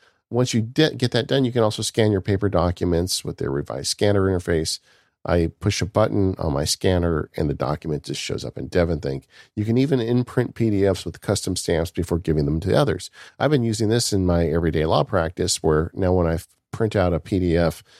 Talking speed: 205 wpm